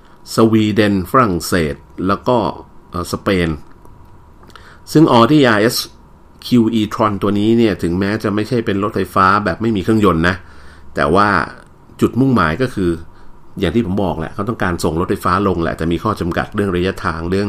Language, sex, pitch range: Thai, male, 80-105 Hz